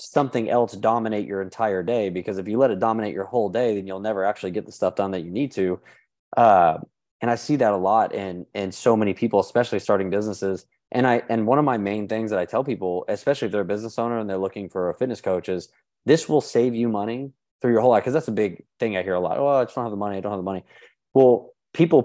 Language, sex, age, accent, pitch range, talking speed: English, male, 20-39, American, 100-120 Hz, 270 wpm